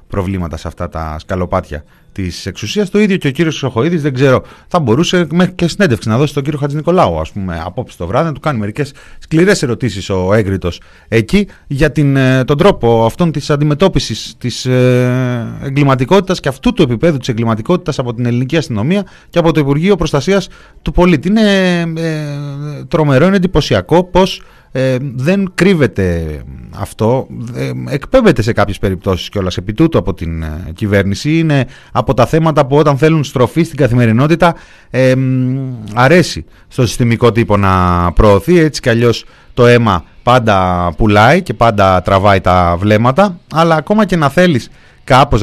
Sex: male